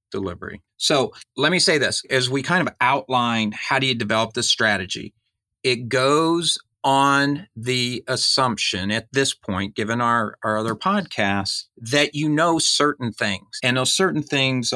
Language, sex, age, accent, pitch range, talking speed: English, male, 40-59, American, 105-135 Hz, 160 wpm